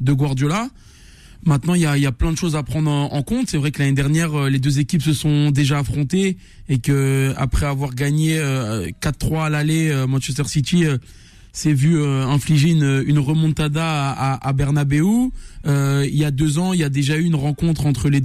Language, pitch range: French, 140-165 Hz